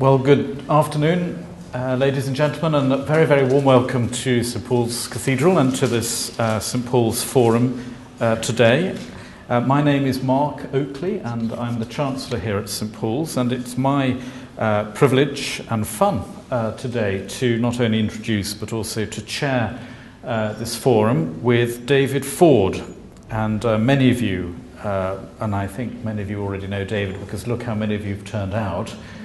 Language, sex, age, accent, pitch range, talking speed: English, male, 50-69, British, 110-130 Hz, 180 wpm